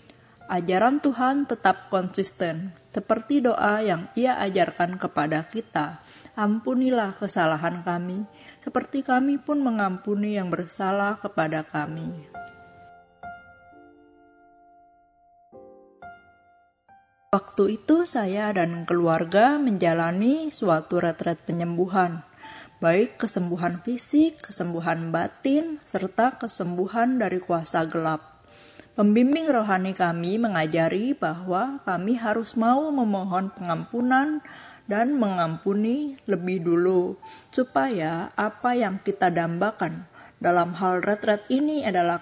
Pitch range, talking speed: 175-245 Hz, 90 wpm